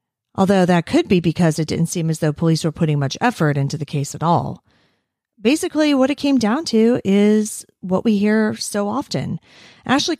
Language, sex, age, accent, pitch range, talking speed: English, female, 40-59, American, 160-230 Hz, 195 wpm